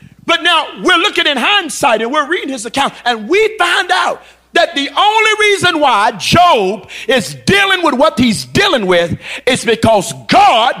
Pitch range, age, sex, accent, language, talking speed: 235-345 Hz, 50-69, male, American, English, 170 wpm